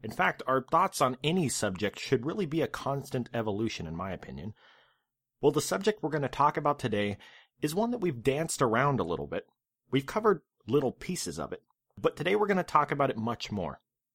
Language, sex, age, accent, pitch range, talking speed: English, male, 30-49, American, 120-155 Hz, 210 wpm